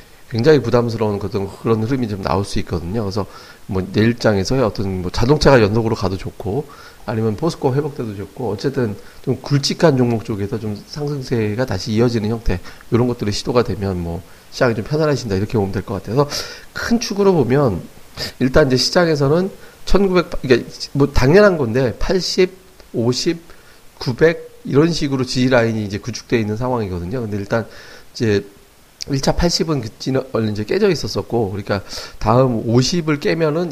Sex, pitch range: male, 105-140 Hz